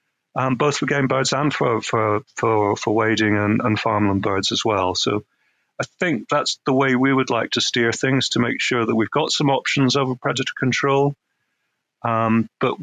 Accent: British